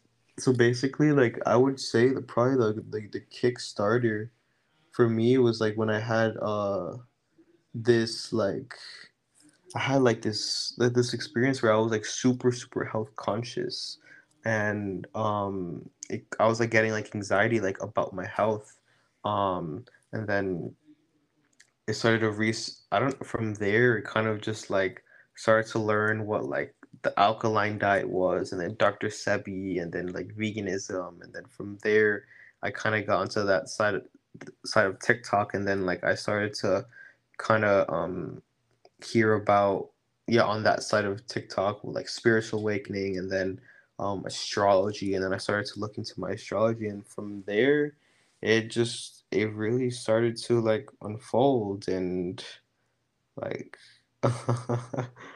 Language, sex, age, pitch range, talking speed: English, male, 20-39, 105-120 Hz, 155 wpm